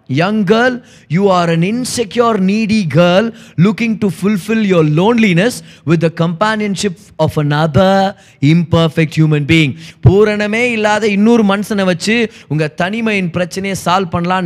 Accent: native